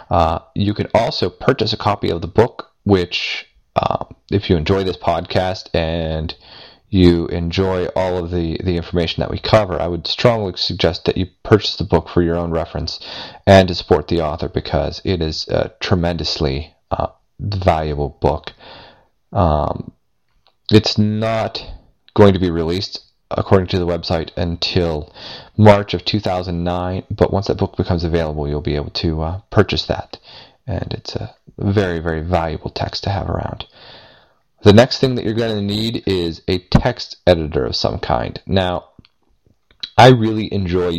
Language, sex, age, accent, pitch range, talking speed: English, male, 30-49, American, 80-95 Hz, 165 wpm